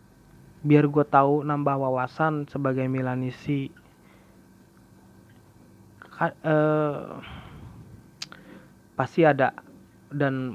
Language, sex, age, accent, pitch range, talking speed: Indonesian, male, 30-49, native, 130-150 Hz, 65 wpm